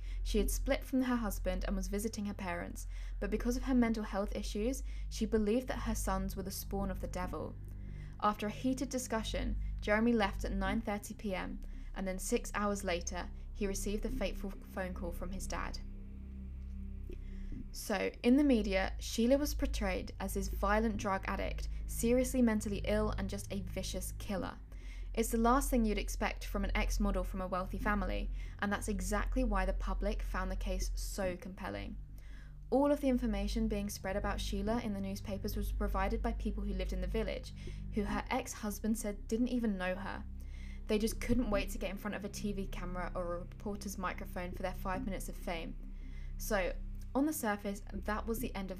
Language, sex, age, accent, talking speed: English, female, 10-29, British, 190 wpm